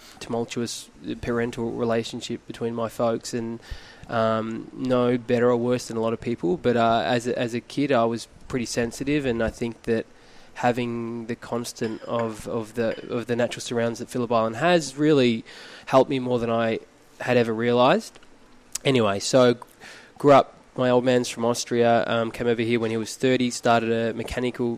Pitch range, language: 115-125 Hz, English